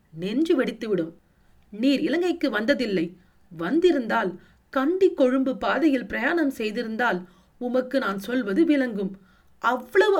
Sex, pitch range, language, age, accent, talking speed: female, 200-320 Hz, Tamil, 40-59, native, 95 wpm